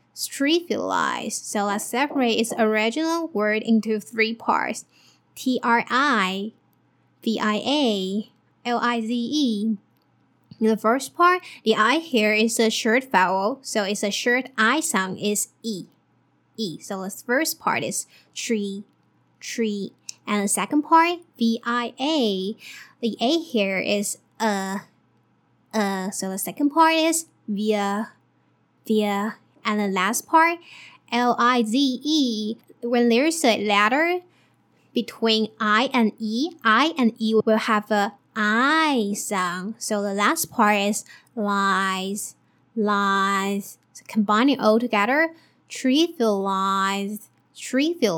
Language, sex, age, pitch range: Chinese, female, 10-29, 205-260 Hz